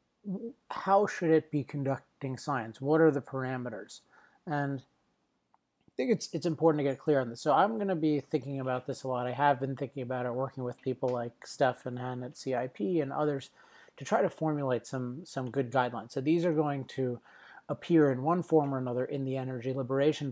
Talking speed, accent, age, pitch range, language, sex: 210 wpm, American, 30-49, 130-150 Hz, English, male